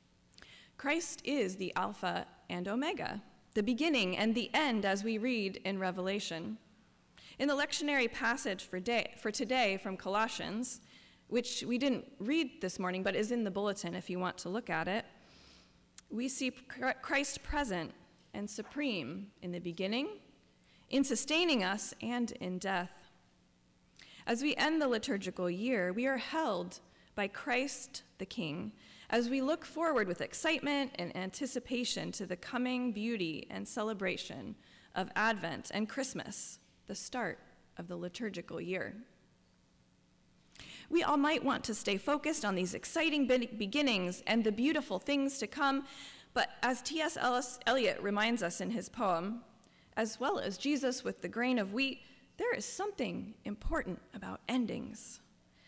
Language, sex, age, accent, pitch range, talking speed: English, female, 20-39, American, 195-275 Hz, 145 wpm